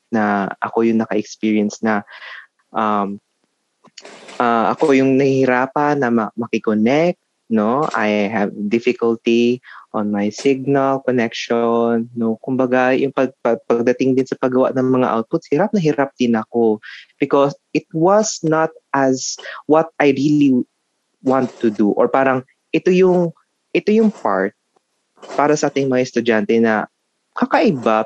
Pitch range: 115-150 Hz